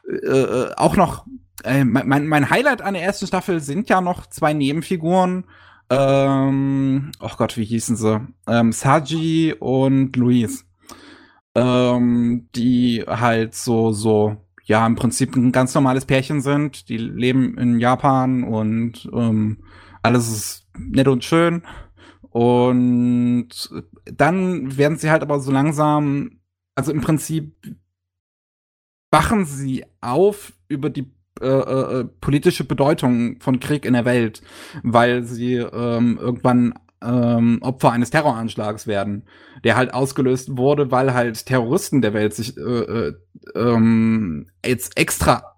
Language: German